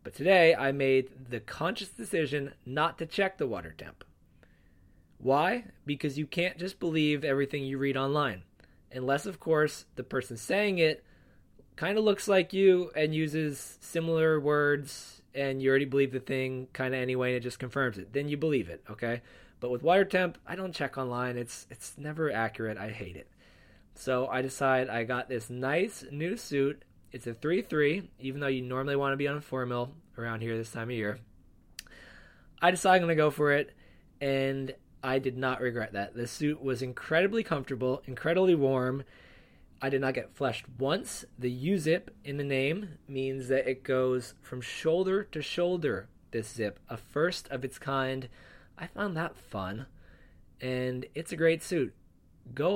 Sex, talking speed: male, 175 wpm